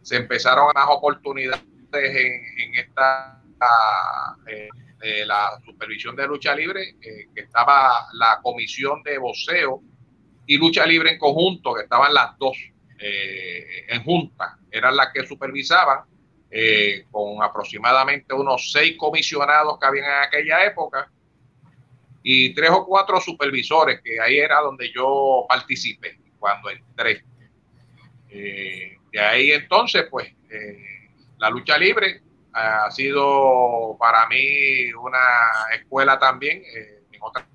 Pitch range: 115-145 Hz